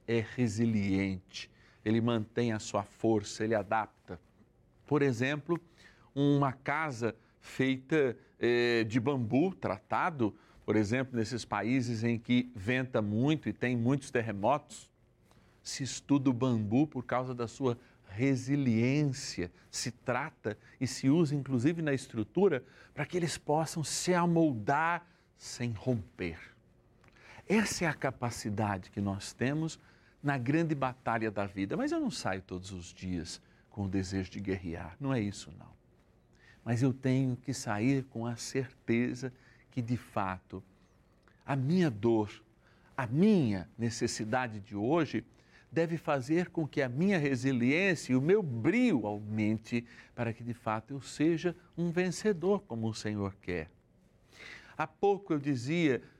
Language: Portuguese